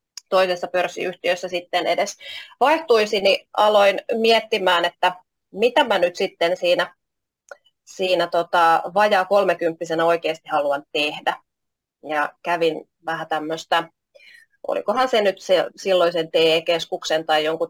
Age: 30-49